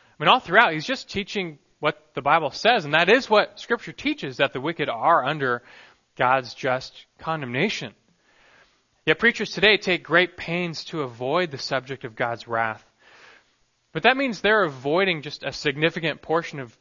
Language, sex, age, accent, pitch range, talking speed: English, male, 20-39, American, 135-190 Hz, 170 wpm